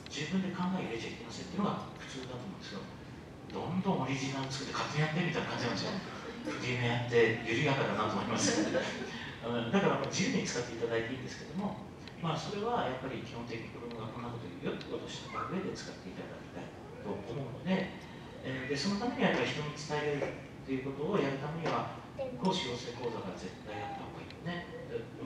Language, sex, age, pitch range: English, male, 40-59, 120-180 Hz